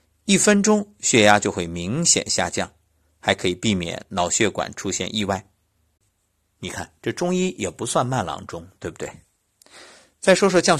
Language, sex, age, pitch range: Chinese, male, 50-69, 90-140 Hz